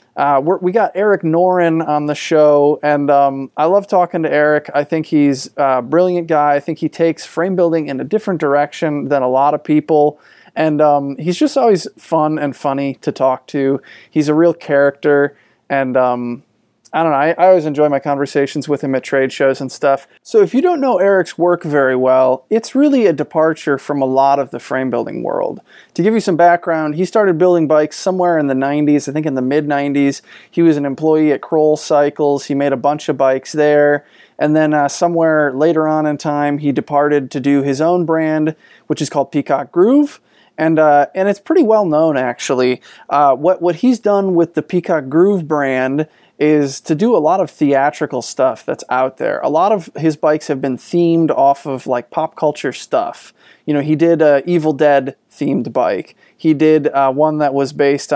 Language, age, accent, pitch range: English, 20-39, American, 140-165 Hz